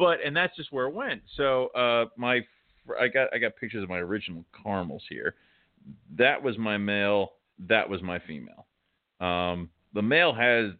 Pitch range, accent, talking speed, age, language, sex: 90-110 Hz, American, 180 wpm, 40-59, English, male